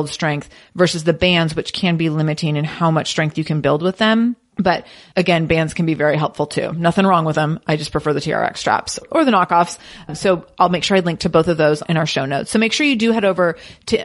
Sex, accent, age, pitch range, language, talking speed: female, American, 30-49, 165-200 Hz, English, 255 wpm